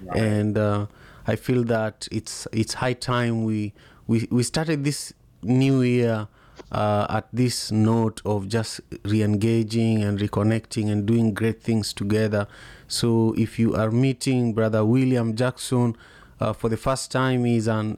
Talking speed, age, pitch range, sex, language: 150 wpm, 30-49, 110-125 Hz, male, English